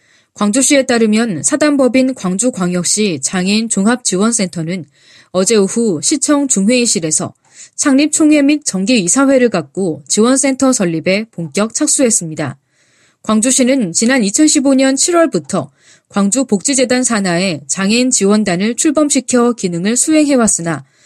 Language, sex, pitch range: Korean, female, 185-270 Hz